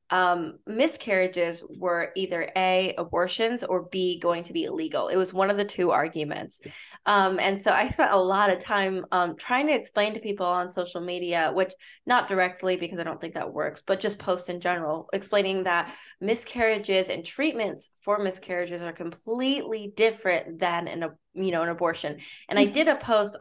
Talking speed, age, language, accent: 185 wpm, 20-39, English, American